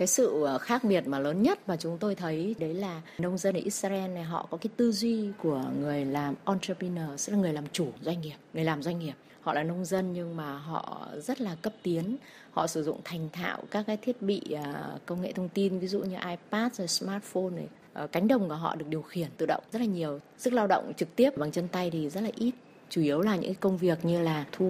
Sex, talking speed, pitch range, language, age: female, 250 wpm, 155-205 Hz, Vietnamese, 20-39